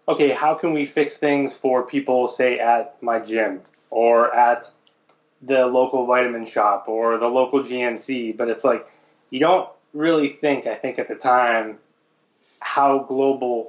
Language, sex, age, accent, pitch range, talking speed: English, male, 20-39, American, 125-145 Hz, 160 wpm